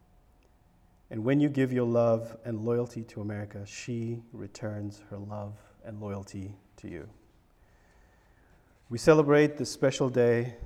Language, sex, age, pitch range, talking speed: English, male, 40-59, 105-125 Hz, 130 wpm